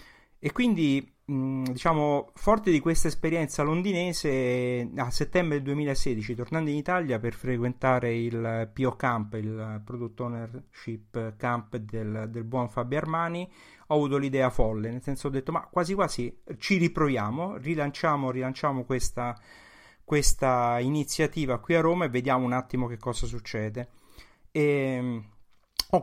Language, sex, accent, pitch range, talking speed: Italian, male, native, 120-155 Hz, 135 wpm